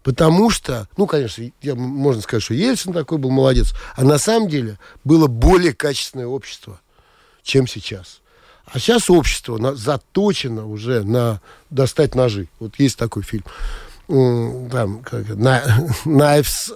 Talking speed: 130 wpm